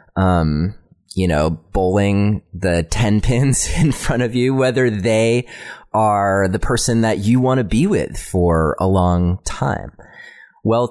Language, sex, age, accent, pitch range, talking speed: English, male, 30-49, American, 95-135 Hz, 150 wpm